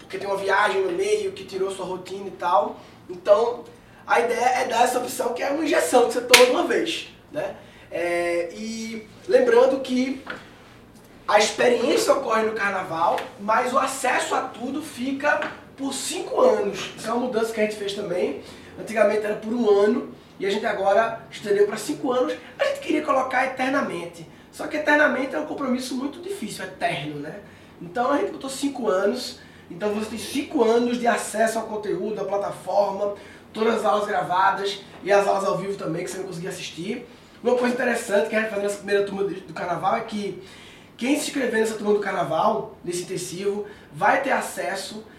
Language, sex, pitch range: Portuguese, male, 195-250 Hz